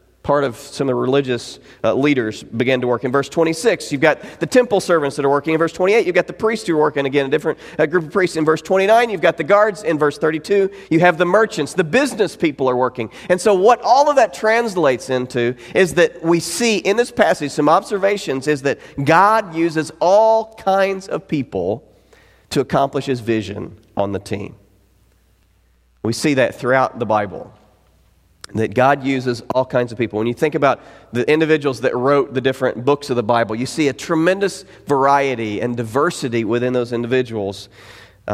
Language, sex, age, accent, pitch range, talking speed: English, male, 40-59, American, 115-165 Hz, 200 wpm